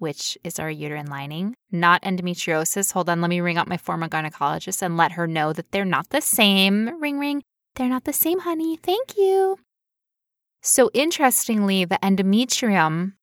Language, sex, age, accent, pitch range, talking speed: English, female, 10-29, American, 175-235 Hz, 170 wpm